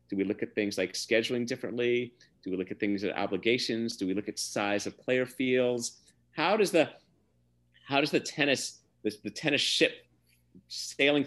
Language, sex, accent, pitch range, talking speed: English, male, American, 105-150 Hz, 185 wpm